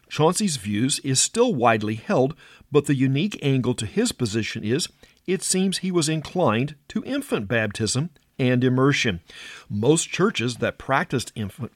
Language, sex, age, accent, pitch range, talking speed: English, male, 50-69, American, 115-150 Hz, 150 wpm